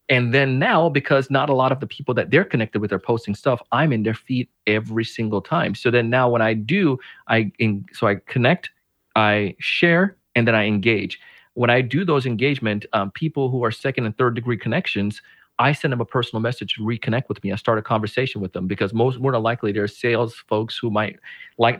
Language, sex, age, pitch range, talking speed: English, male, 30-49, 110-135 Hz, 230 wpm